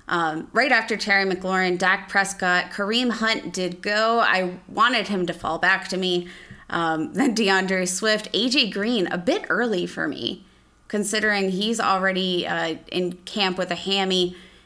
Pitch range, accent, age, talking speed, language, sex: 175-205 Hz, American, 20-39, 160 wpm, English, female